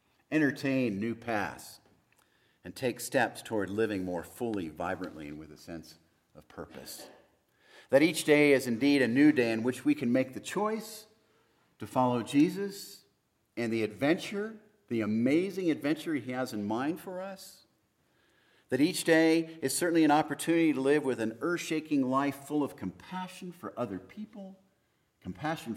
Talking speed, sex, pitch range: 155 wpm, male, 105-150 Hz